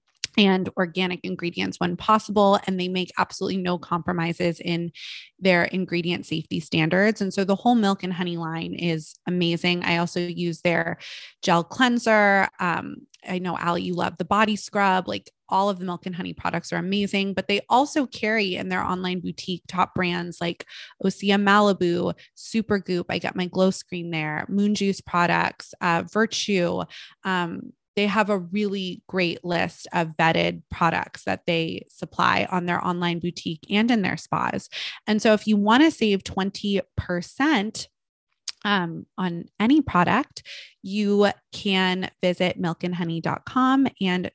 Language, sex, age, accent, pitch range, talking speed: English, female, 20-39, American, 175-205 Hz, 155 wpm